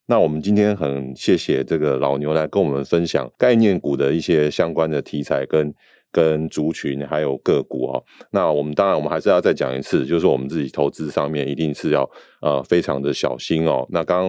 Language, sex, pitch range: Chinese, male, 70-80 Hz